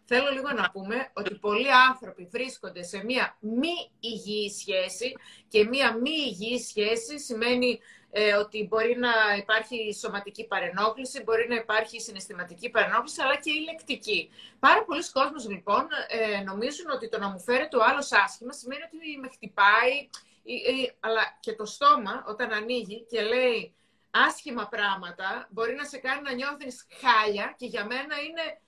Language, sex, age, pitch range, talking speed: Greek, female, 30-49, 225-315 Hz, 150 wpm